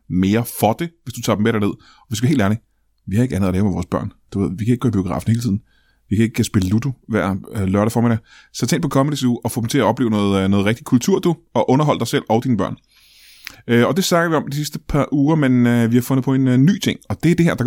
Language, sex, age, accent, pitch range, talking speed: Danish, male, 20-39, native, 105-150 Hz, 295 wpm